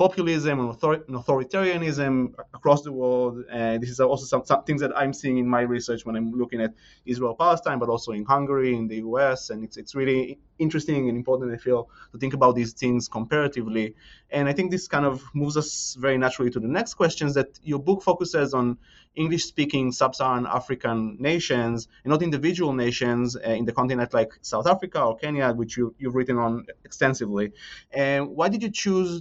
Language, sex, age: English, male, 20-39